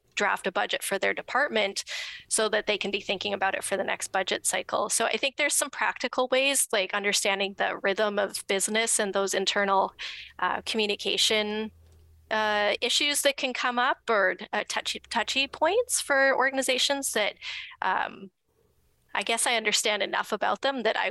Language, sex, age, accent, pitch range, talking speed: English, female, 20-39, American, 200-250 Hz, 175 wpm